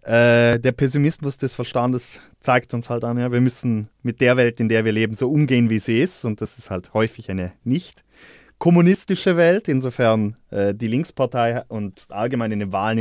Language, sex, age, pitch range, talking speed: English, male, 30-49, 120-145 Hz, 180 wpm